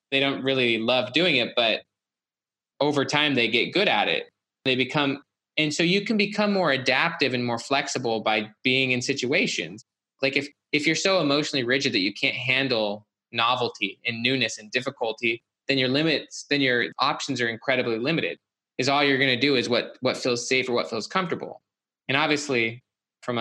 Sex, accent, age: male, American, 20-39